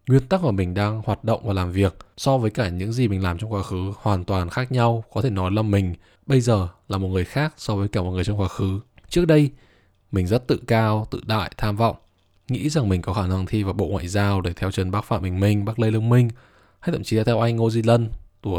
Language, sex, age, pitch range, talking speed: Vietnamese, male, 20-39, 95-120 Hz, 275 wpm